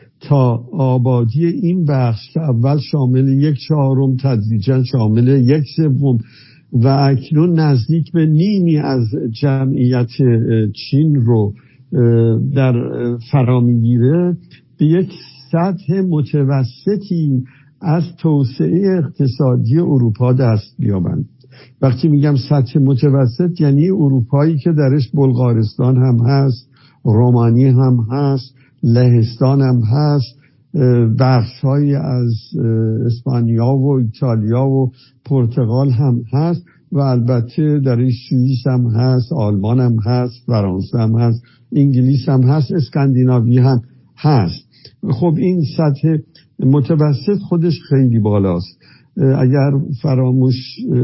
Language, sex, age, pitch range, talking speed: Persian, male, 60-79, 125-145 Hz, 100 wpm